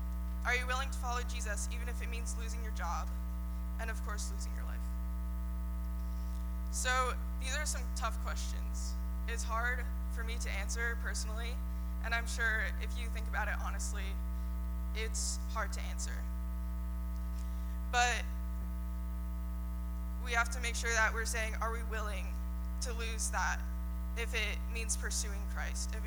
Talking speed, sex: 150 wpm, female